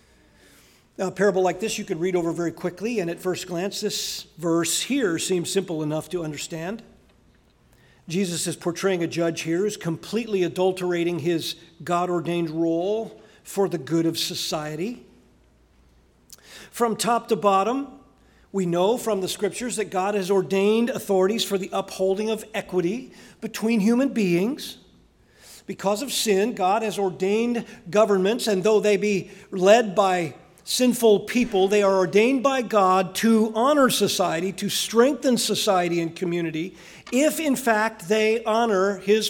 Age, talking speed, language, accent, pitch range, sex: 50-69, 145 wpm, English, American, 180-225 Hz, male